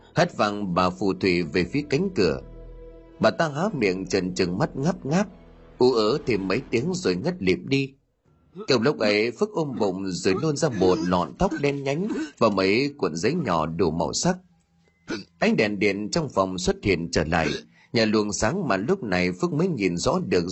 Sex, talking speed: male, 200 wpm